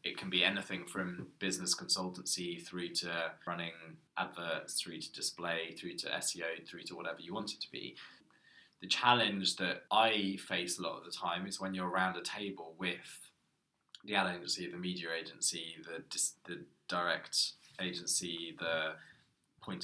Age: 20-39